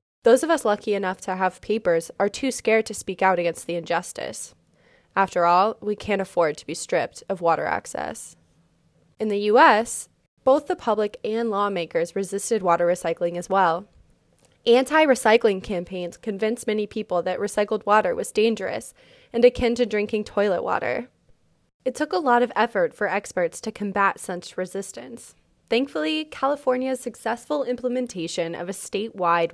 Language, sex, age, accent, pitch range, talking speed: English, female, 20-39, American, 180-245 Hz, 155 wpm